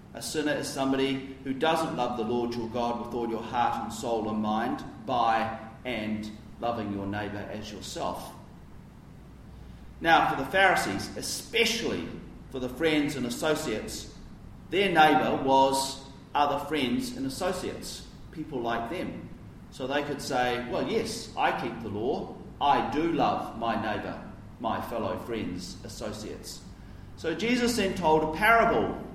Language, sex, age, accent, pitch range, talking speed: English, male, 40-59, Australian, 115-155 Hz, 145 wpm